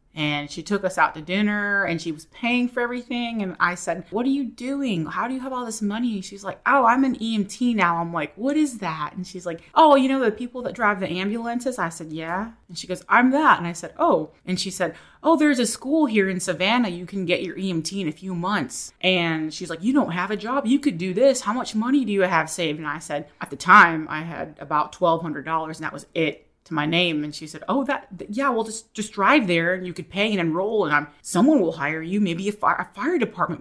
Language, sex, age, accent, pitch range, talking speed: English, female, 30-49, American, 160-205 Hz, 265 wpm